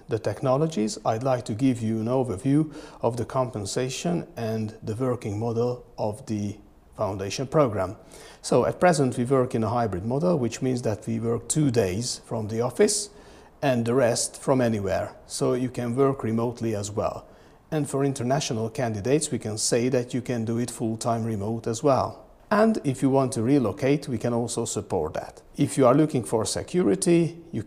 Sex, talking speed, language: male, 185 wpm, English